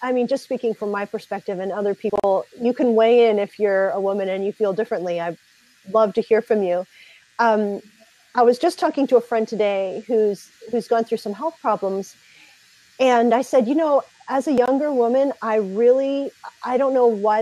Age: 40-59